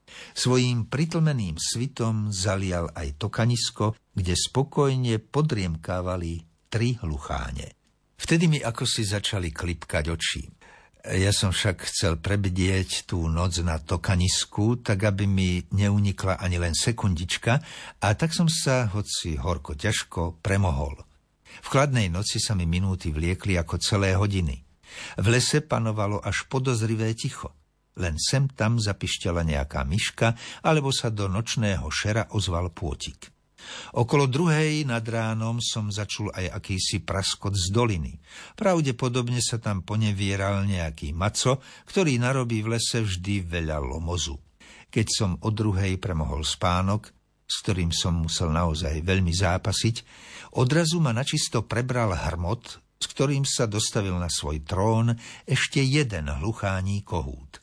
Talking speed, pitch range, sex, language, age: 130 wpm, 85-115 Hz, male, Slovak, 60-79